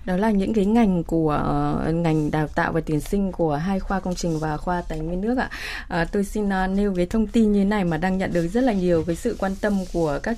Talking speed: 270 wpm